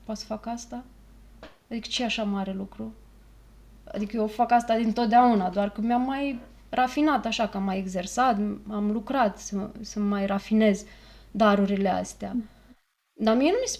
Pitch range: 200-245 Hz